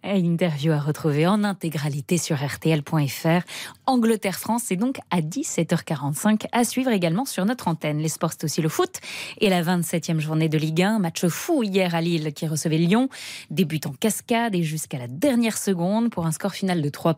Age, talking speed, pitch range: 20-39, 190 wpm, 165-225 Hz